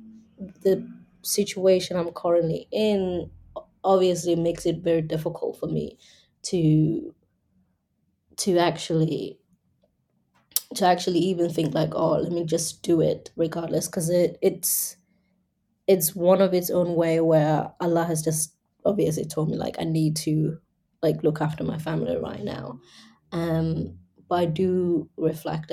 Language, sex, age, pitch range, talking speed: English, female, 20-39, 160-180 Hz, 140 wpm